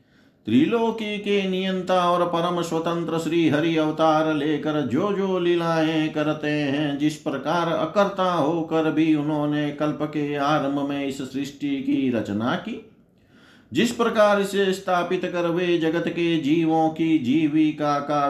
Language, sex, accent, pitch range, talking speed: Hindi, male, native, 145-185 Hz, 135 wpm